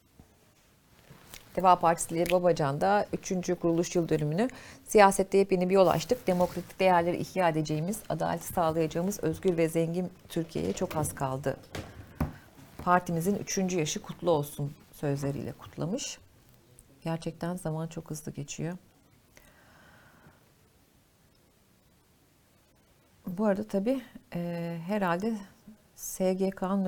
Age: 40-59